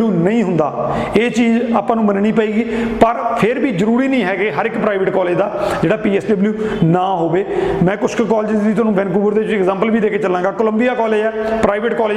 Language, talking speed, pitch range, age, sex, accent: Hindi, 140 wpm, 190-230 Hz, 40-59, male, native